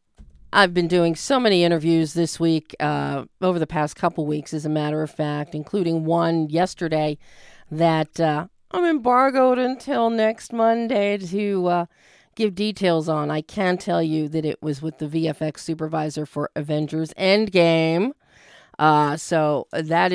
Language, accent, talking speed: English, American, 150 wpm